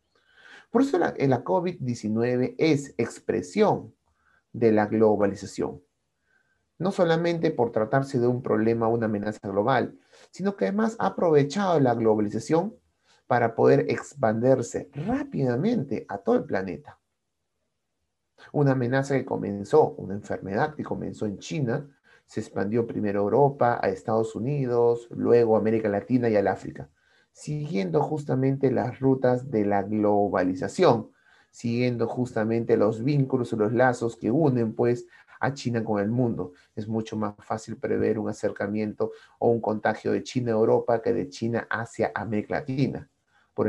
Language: Spanish